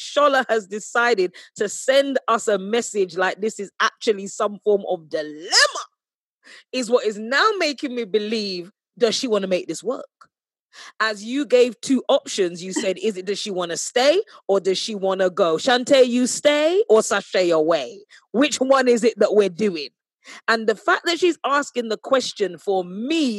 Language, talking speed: English, 185 wpm